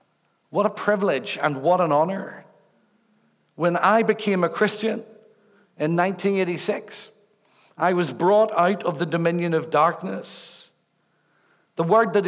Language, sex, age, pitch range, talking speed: English, male, 50-69, 175-210 Hz, 125 wpm